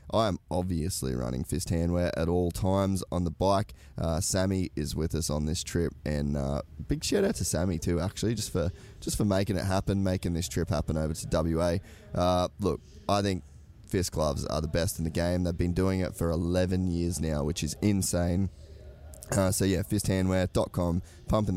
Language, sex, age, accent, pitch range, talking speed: English, male, 20-39, Australian, 80-95 Hz, 200 wpm